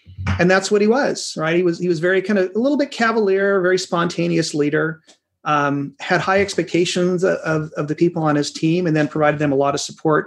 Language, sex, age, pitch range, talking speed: English, male, 30-49, 150-190 Hz, 235 wpm